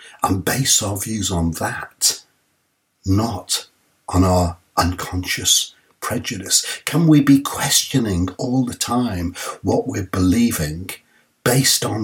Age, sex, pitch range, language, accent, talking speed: 60-79, male, 95-125 Hz, English, British, 115 wpm